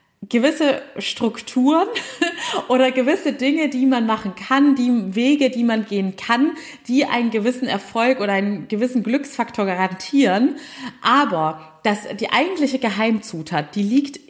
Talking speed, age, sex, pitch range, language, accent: 130 wpm, 30-49, female, 205-260 Hz, German, German